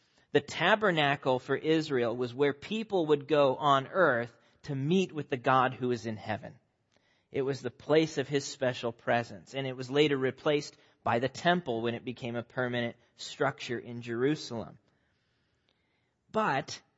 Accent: American